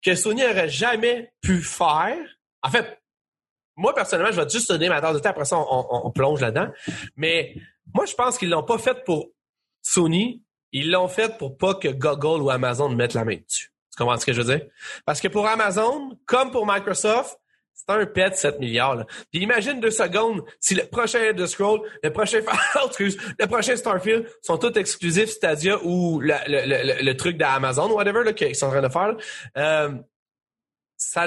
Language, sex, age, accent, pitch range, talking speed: French, male, 30-49, Canadian, 150-220 Hz, 200 wpm